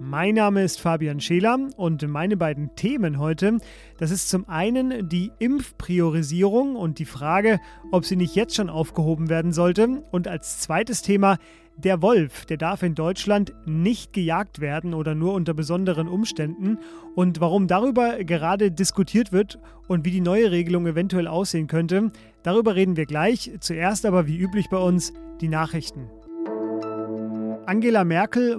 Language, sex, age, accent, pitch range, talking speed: German, male, 30-49, German, 165-205 Hz, 155 wpm